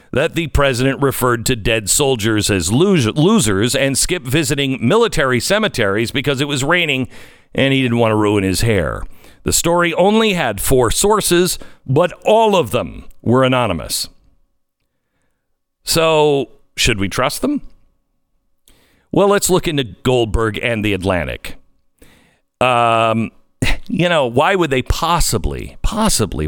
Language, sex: English, male